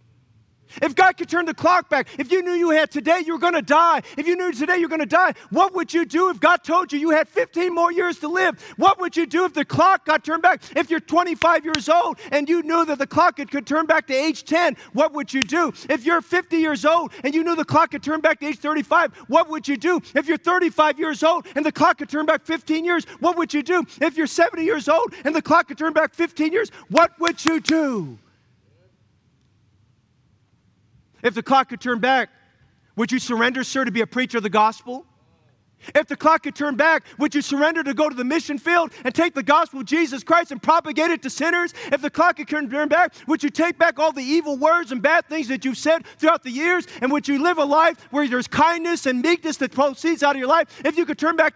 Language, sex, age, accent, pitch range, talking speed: English, male, 40-59, American, 270-335 Hz, 250 wpm